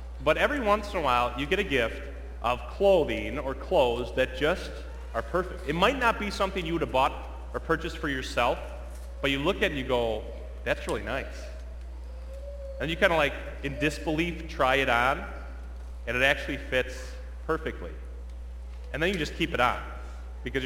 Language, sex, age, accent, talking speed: English, male, 30-49, American, 190 wpm